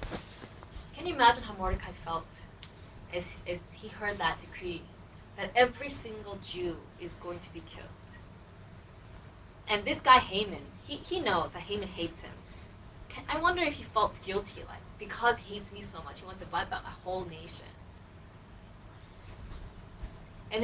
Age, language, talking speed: 20-39, English, 160 wpm